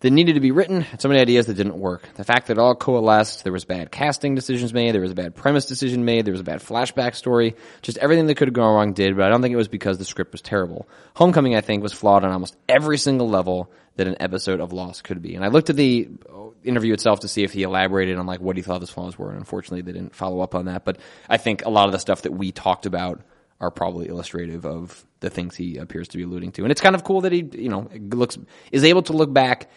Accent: American